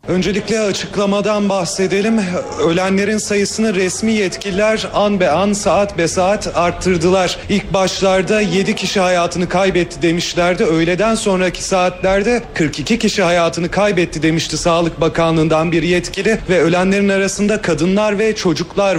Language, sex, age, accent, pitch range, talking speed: Turkish, male, 40-59, native, 175-210 Hz, 125 wpm